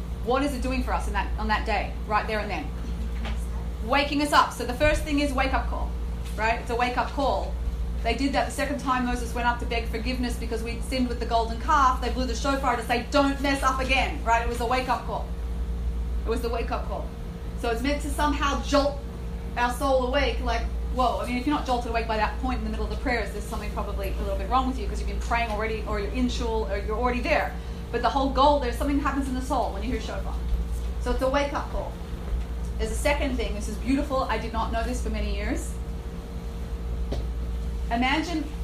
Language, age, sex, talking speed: English, 30-49, female, 240 wpm